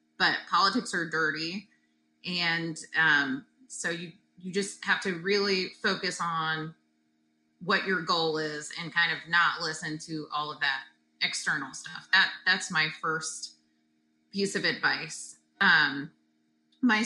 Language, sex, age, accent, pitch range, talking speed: English, female, 30-49, American, 155-200 Hz, 135 wpm